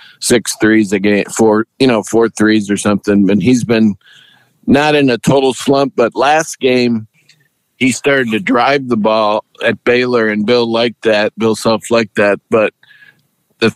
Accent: American